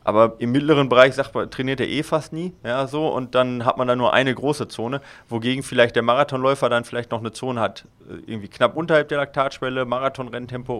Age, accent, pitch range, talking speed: 30-49, German, 110-130 Hz, 210 wpm